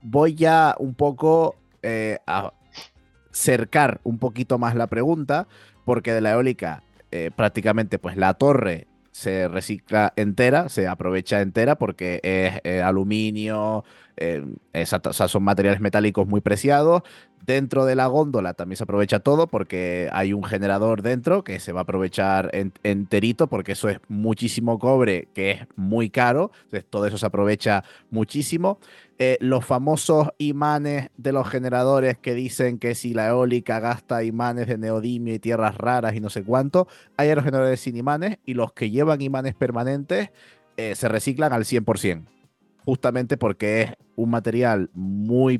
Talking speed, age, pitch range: 160 wpm, 30-49, 100-130 Hz